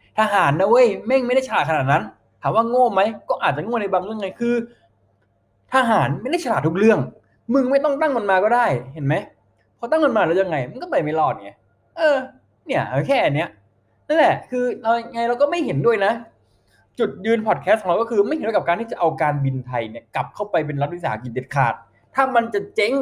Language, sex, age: Thai, male, 20-39